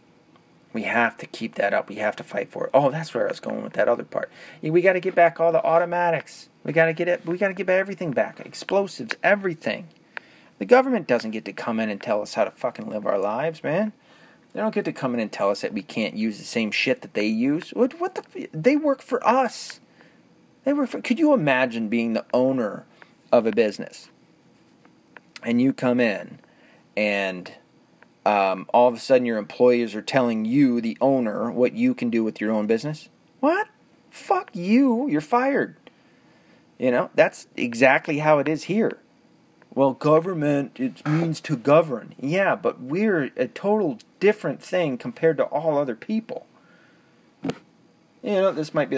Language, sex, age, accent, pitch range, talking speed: English, male, 30-49, American, 120-205 Hz, 195 wpm